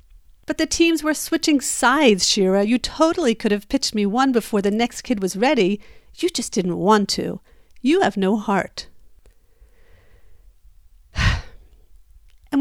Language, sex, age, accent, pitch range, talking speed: English, female, 50-69, American, 180-260 Hz, 145 wpm